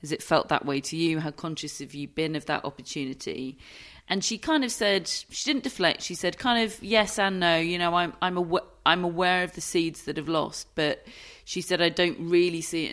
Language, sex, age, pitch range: English, female, 30-49, 150-180 Hz